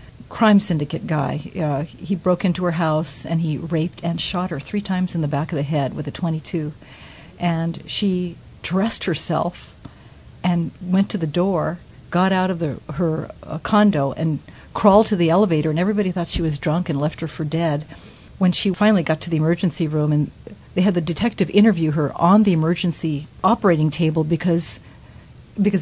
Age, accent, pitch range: 50-69, American, 160-190 Hz